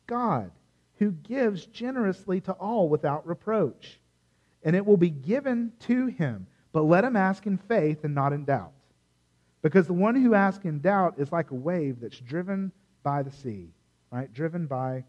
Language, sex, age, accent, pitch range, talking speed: English, male, 40-59, American, 115-195 Hz, 175 wpm